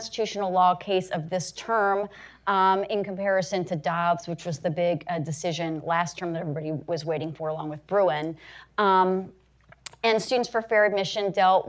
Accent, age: American, 30-49